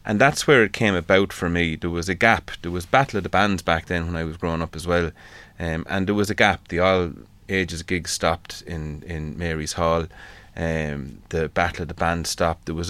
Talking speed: 235 wpm